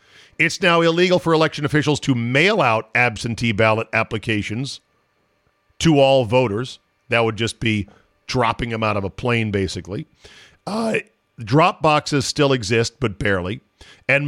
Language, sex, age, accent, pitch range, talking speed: English, male, 50-69, American, 115-155 Hz, 145 wpm